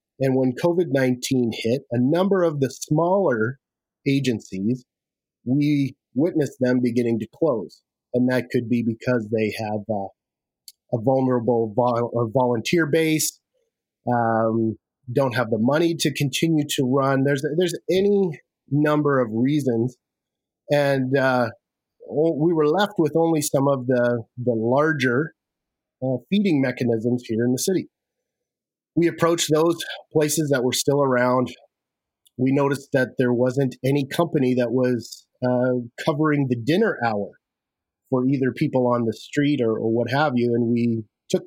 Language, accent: English, American